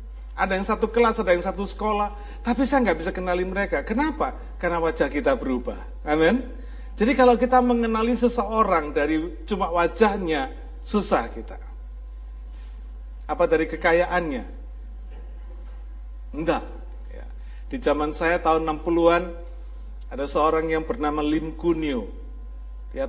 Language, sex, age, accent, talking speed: Indonesian, male, 50-69, native, 120 wpm